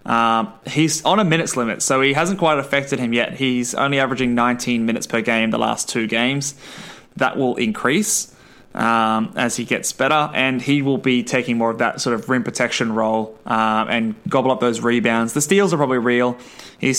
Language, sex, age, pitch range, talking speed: English, male, 20-39, 115-140 Hz, 200 wpm